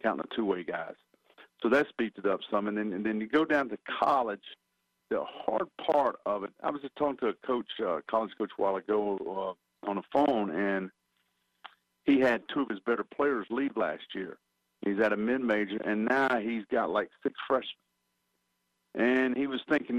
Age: 50-69